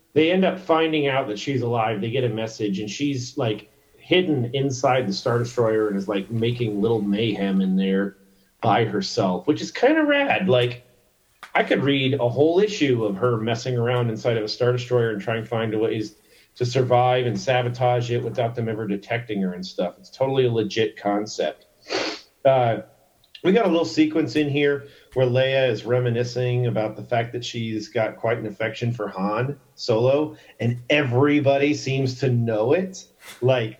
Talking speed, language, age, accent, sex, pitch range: 185 wpm, English, 40-59, American, male, 110-140 Hz